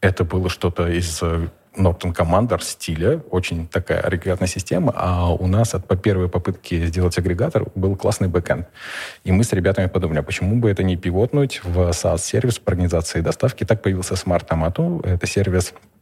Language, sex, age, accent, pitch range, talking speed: Russian, male, 20-39, native, 85-105 Hz, 165 wpm